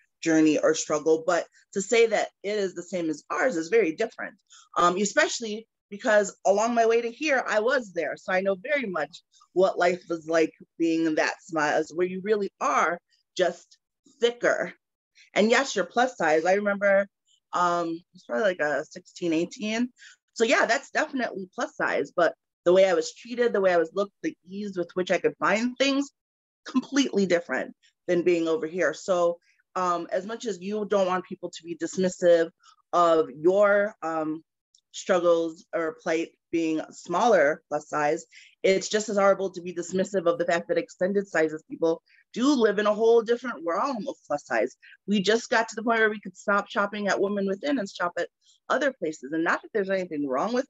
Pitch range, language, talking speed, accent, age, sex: 170-230 Hz, English, 195 wpm, American, 20-39, female